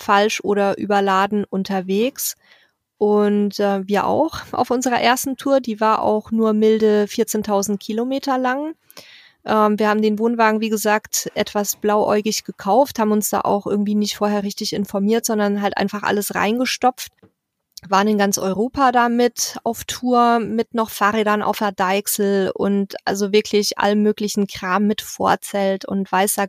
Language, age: German, 20-39